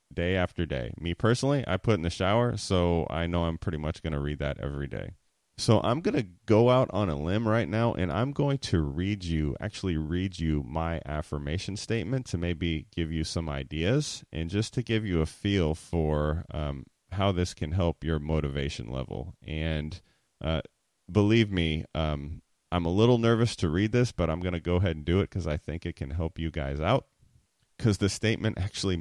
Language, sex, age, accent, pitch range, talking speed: English, male, 30-49, American, 75-100 Hz, 210 wpm